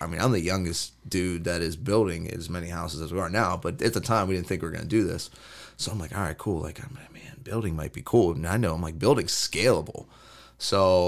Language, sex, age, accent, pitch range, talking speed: English, male, 30-49, American, 85-105 Hz, 275 wpm